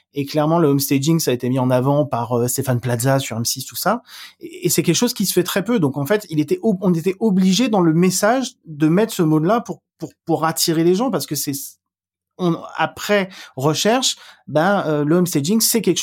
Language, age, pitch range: French, 30-49, 130-185 Hz